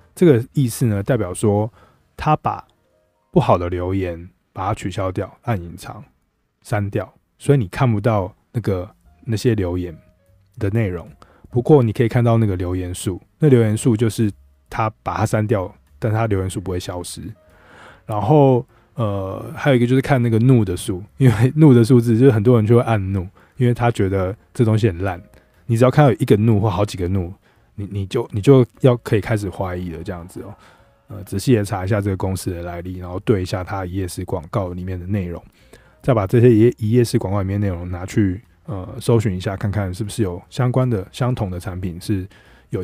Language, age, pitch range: Chinese, 20-39, 95-120 Hz